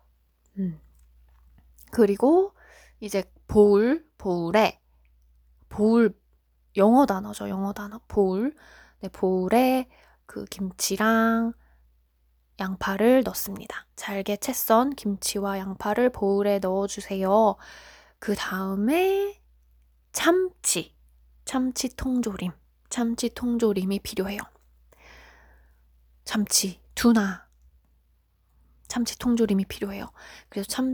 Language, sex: Korean, female